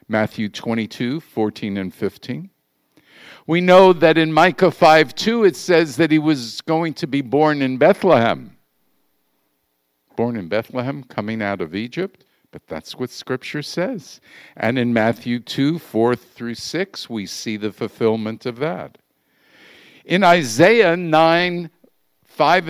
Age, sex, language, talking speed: 50-69, male, English, 135 wpm